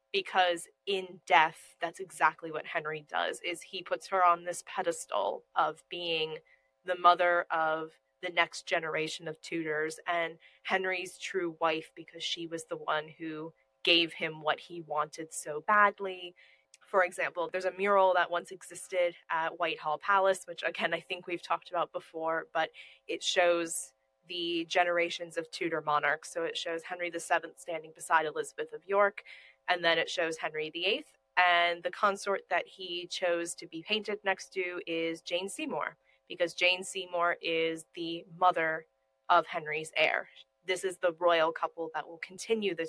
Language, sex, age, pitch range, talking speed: English, female, 20-39, 160-185 Hz, 165 wpm